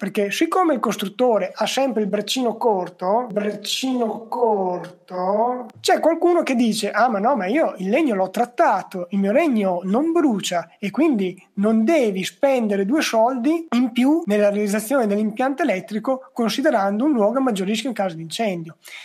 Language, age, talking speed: Italian, 30-49, 160 wpm